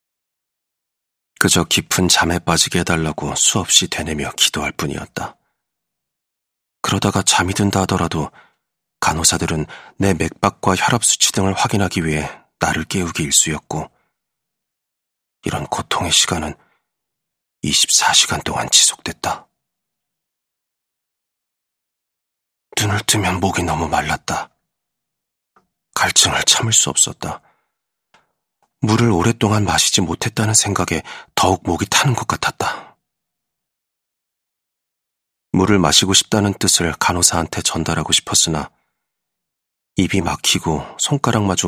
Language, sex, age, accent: Korean, male, 40-59, native